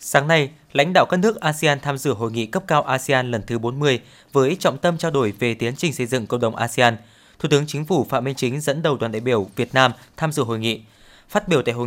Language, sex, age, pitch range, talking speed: Vietnamese, male, 20-39, 120-160 Hz, 265 wpm